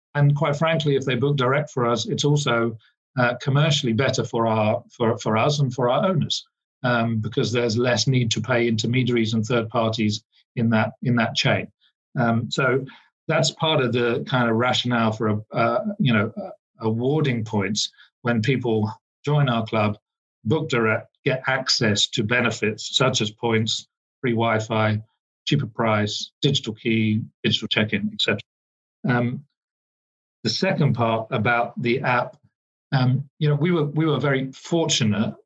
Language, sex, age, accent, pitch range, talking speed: English, male, 40-59, British, 110-140 Hz, 160 wpm